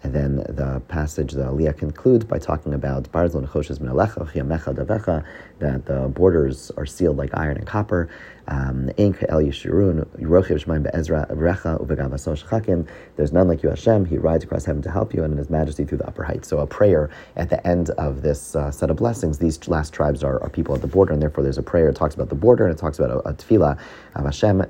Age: 30-49